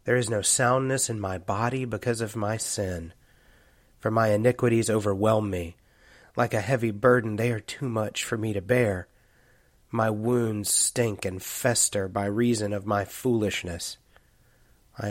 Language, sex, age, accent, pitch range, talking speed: English, male, 30-49, American, 100-120 Hz, 155 wpm